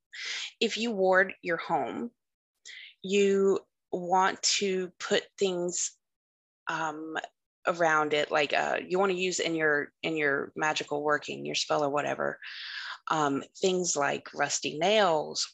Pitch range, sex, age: 150-195 Hz, female, 20-39